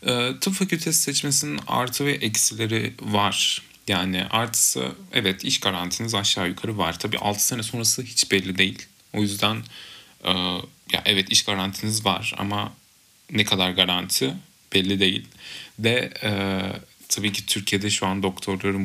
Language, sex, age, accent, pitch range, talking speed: Turkish, male, 30-49, native, 95-115 Hz, 130 wpm